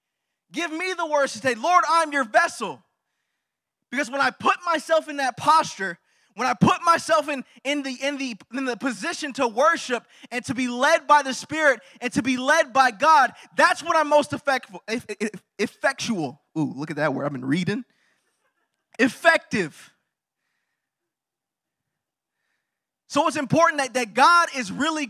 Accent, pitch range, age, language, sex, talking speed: American, 240-300 Hz, 20-39, English, male, 150 wpm